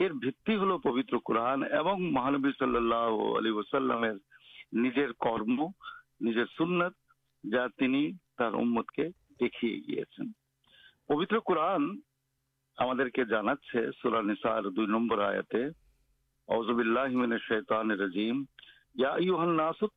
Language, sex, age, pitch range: Urdu, male, 50-69, 120-165 Hz